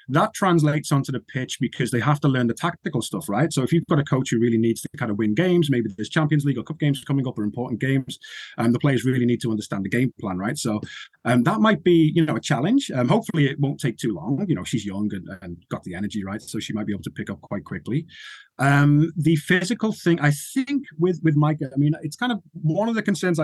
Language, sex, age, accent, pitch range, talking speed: English, male, 30-49, British, 120-160 Hz, 270 wpm